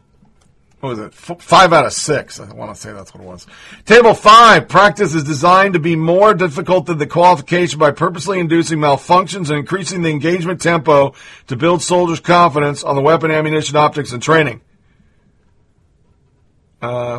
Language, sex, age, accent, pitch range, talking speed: English, male, 40-59, American, 140-170 Hz, 170 wpm